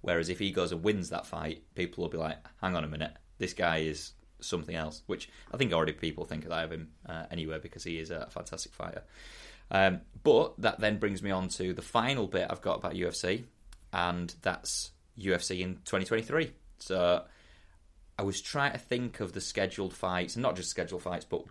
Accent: British